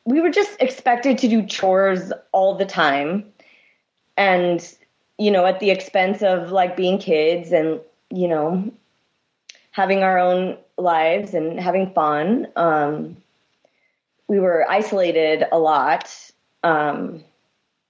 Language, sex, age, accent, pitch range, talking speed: English, female, 30-49, American, 165-195 Hz, 125 wpm